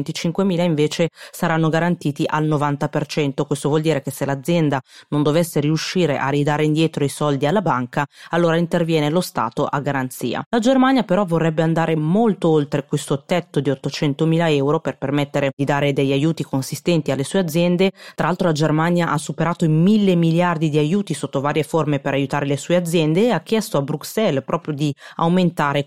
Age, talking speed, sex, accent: 30-49, 175 wpm, female, native